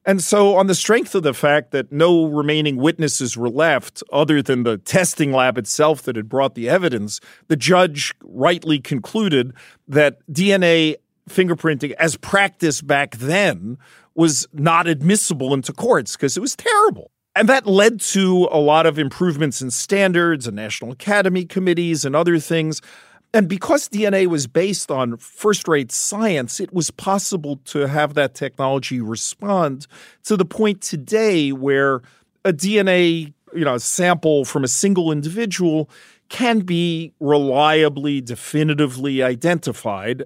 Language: English